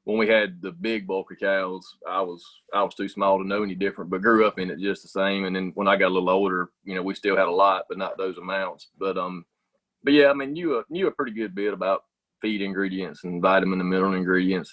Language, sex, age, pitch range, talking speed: English, male, 30-49, 95-115 Hz, 265 wpm